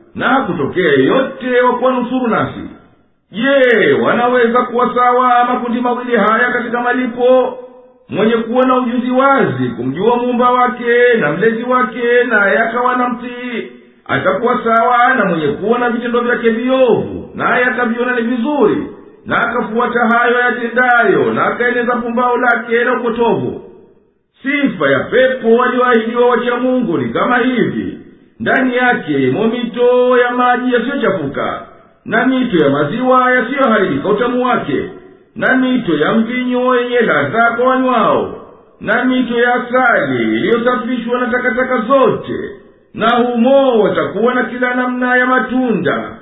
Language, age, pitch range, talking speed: Swahili, 50-69, 235-250 Hz, 130 wpm